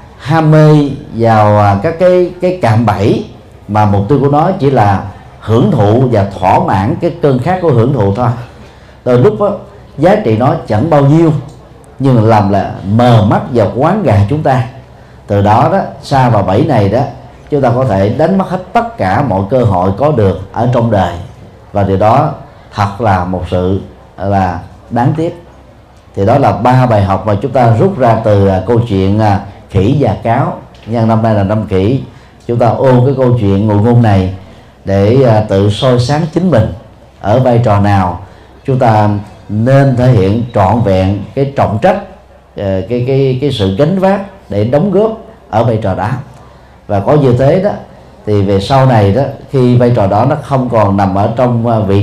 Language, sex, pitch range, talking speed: Vietnamese, male, 100-135 Hz, 195 wpm